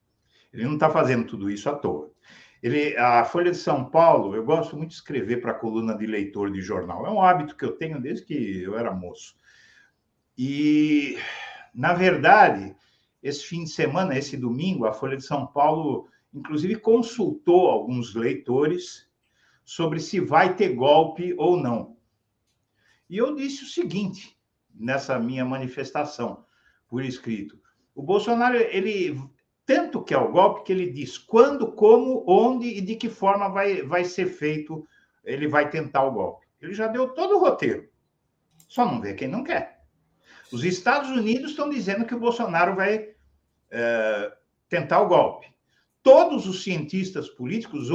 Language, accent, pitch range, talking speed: Portuguese, Brazilian, 135-215 Hz, 160 wpm